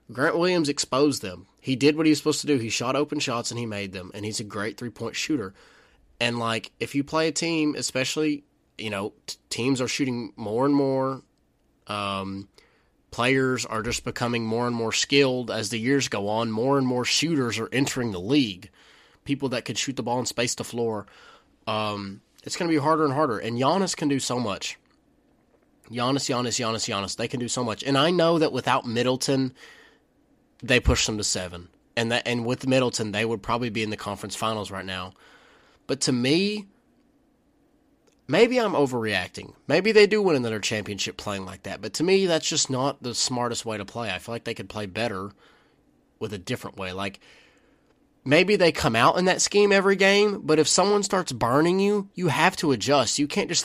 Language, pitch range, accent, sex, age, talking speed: English, 110-150 Hz, American, male, 20-39, 205 wpm